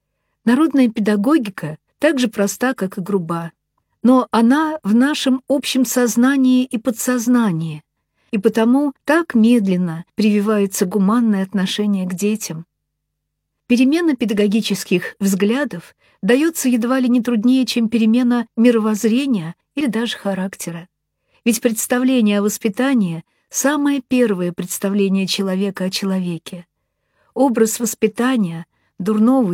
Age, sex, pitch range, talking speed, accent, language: 50-69, female, 190-245 Hz, 105 wpm, native, Russian